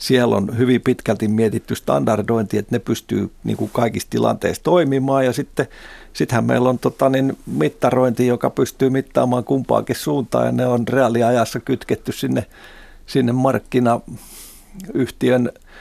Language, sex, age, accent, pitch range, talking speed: Finnish, male, 50-69, native, 110-130 Hz, 130 wpm